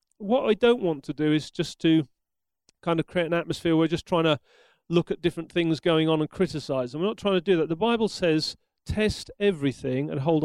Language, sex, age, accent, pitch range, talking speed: English, male, 40-59, British, 155-195 Hz, 235 wpm